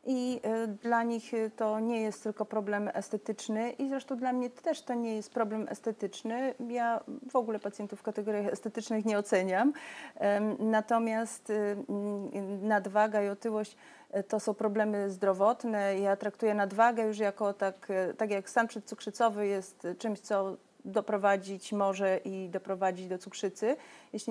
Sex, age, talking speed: female, 30-49, 140 wpm